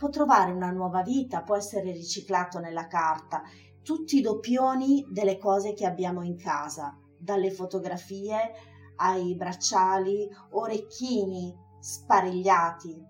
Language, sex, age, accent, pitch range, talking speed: Italian, female, 30-49, native, 180-235 Hz, 115 wpm